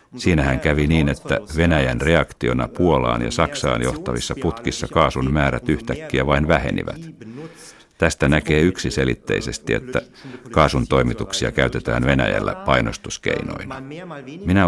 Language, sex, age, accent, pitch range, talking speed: Finnish, male, 60-79, native, 65-90 Hz, 105 wpm